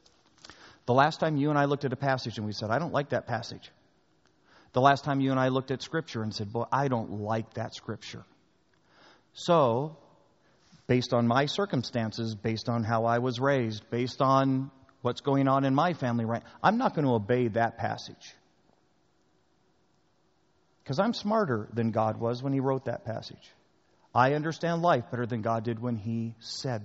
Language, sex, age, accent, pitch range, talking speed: English, male, 40-59, American, 110-140 Hz, 185 wpm